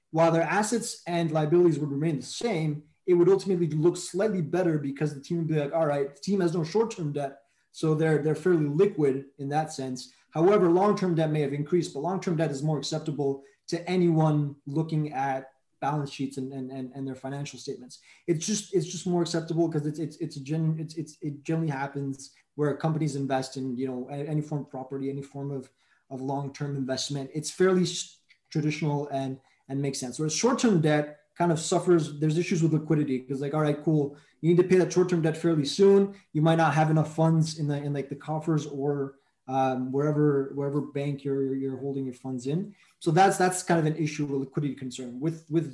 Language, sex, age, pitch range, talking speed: English, male, 20-39, 140-170 Hz, 210 wpm